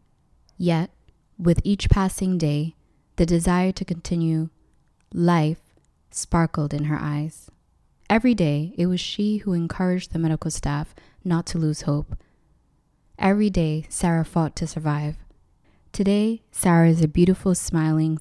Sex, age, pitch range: female, 20-39, 155-185 Hz